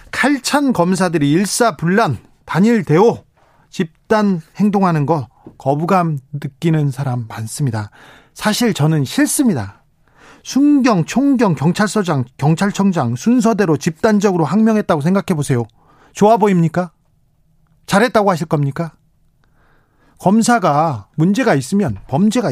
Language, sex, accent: Korean, male, native